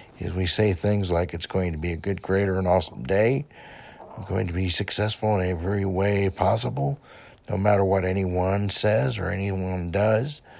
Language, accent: English, American